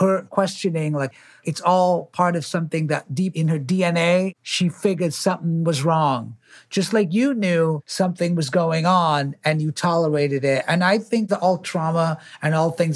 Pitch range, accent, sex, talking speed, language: 145-180 Hz, American, male, 180 wpm, English